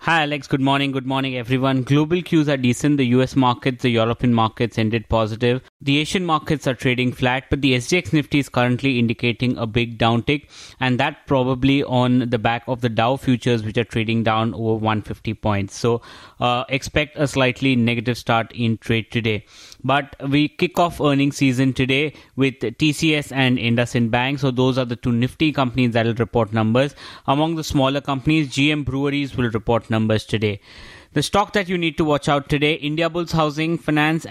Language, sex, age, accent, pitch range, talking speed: English, male, 30-49, Indian, 120-145 Hz, 190 wpm